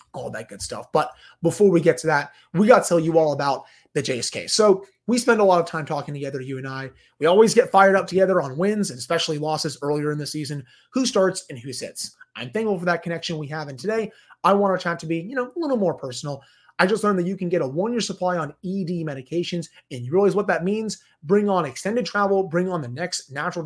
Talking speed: 250 wpm